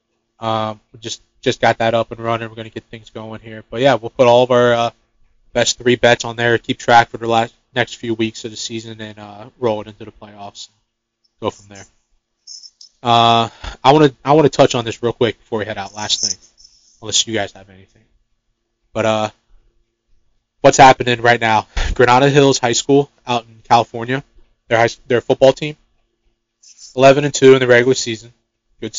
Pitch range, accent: 115-120 Hz, American